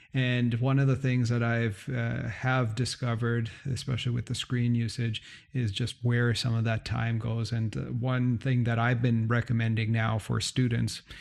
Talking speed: 180 wpm